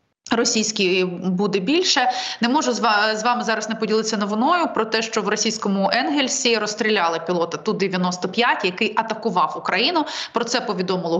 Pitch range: 200-240 Hz